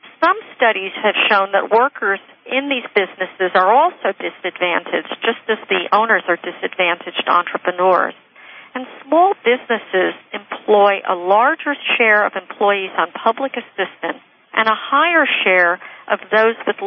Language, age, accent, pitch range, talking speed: English, 50-69, American, 185-245 Hz, 135 wpm